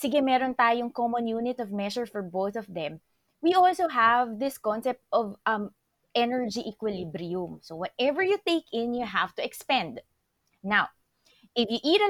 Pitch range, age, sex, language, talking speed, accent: 205-270 Hz, 20-39, female, Filipino, 170 wpm, native